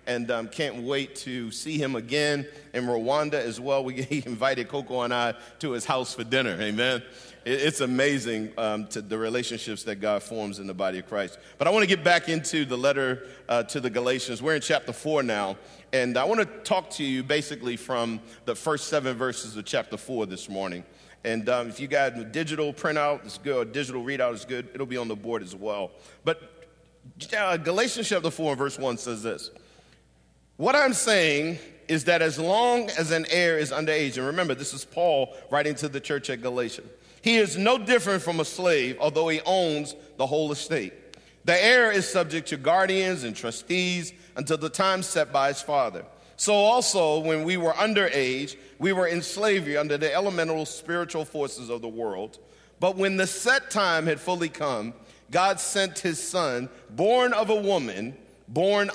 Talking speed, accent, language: 195 wpm, American, English